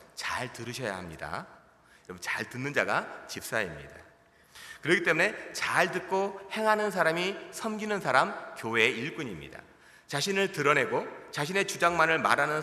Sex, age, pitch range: male, 30-49, 160-220 Hz